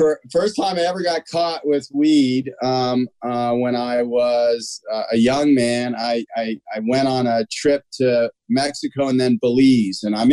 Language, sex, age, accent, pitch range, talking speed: English, male, 40-59, American, 125-145 Hz, 180 wpm